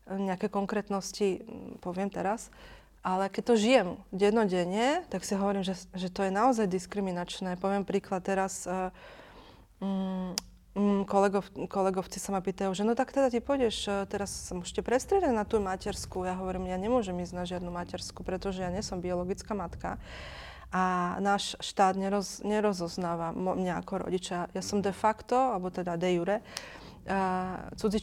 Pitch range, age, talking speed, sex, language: 185-210 Hz, 20-39, 155 wpm, female, Slovak